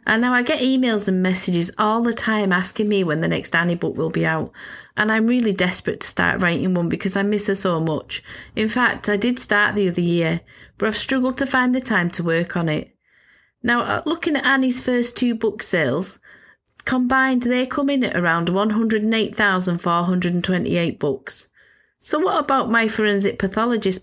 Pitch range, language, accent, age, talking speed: 175-235 Hz, English, British, 40-59, 185 wpm